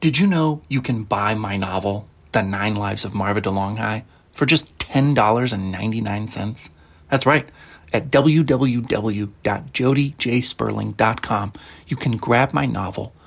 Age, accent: 30-49, American